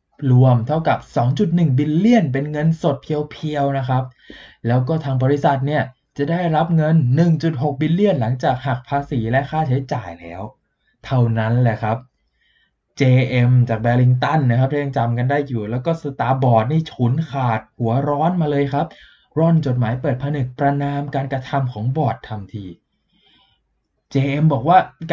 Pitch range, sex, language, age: 130-175 Hz, male, Thai, 20-39